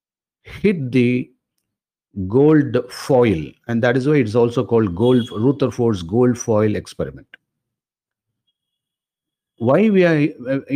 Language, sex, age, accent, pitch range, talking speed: Tamil, male, 50-69, native, 110-140 Hz, 110 wpm